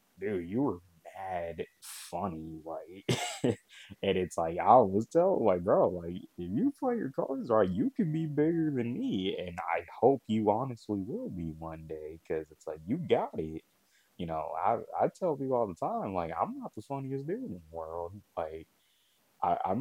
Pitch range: 80-100 Hz